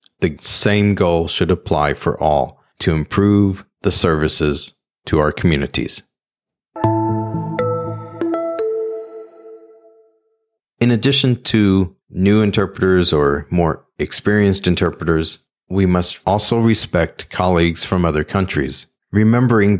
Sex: male